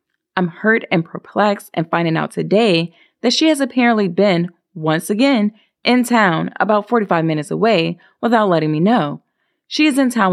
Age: 20-39